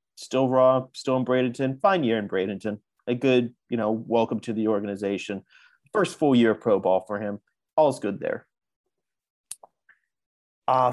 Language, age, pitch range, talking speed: English, 30-49, 120-155 Hz, 160 wpm